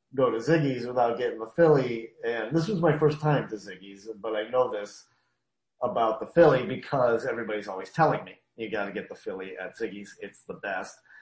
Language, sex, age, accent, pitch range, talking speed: English, male, 40-59, American, 110-135 Hz, 200 wpm